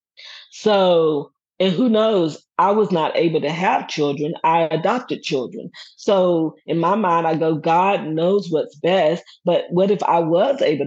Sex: female